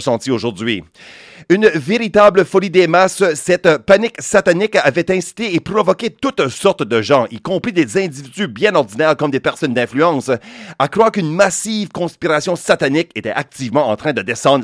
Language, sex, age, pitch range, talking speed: English, male, 40-59, 140-190 Hz, 165 wpm